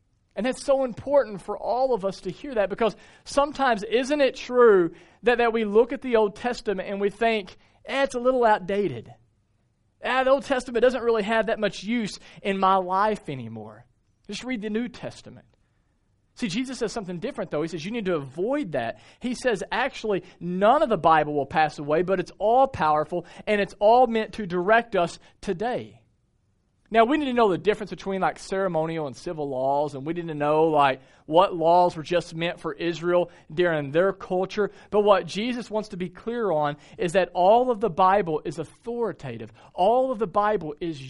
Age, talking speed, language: 40-59, 200 wpm, English